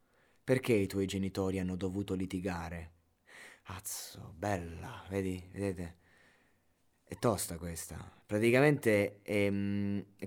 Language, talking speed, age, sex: Italian, 100 wpm, 20-39, male